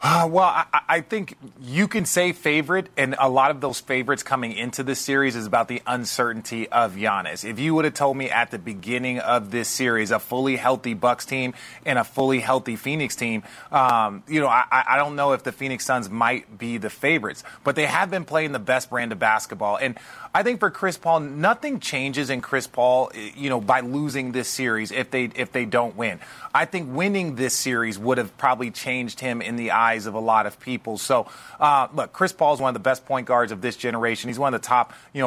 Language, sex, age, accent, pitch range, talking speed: English, male, 30-49, American, 120-155 Hz, 230 wpm